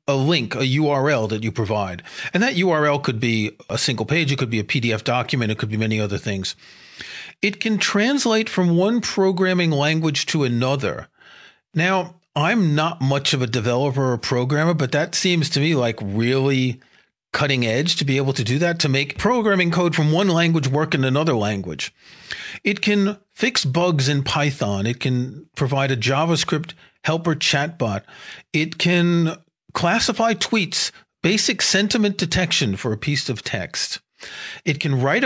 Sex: male